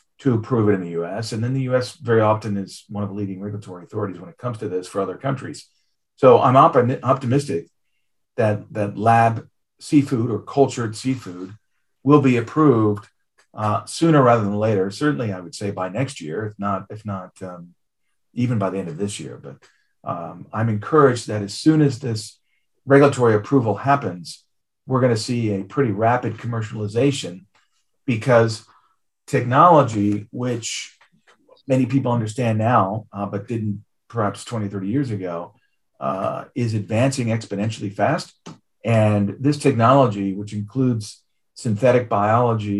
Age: 40-59